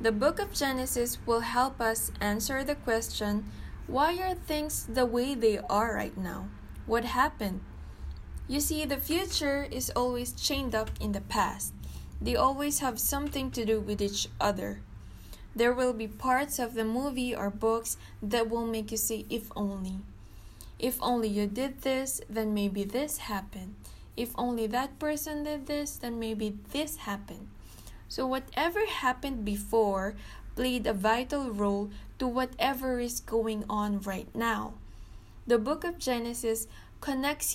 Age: 20-39